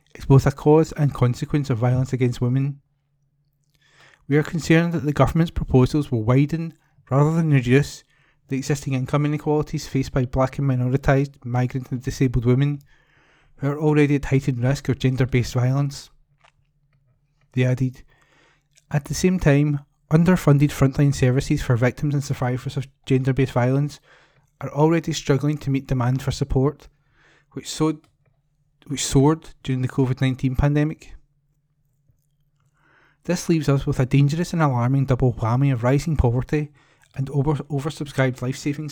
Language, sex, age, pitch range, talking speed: English, male, 30-49, 130-150 Hz, 140 wpm